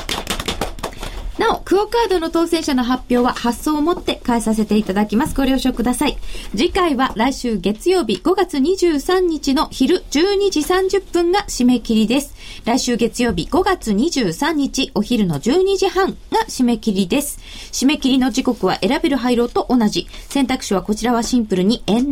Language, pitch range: Japanese, 225-335 Hz